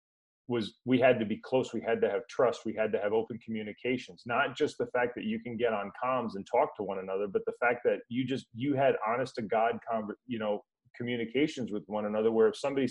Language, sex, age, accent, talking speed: English, male, 30-49, American, 240 wpm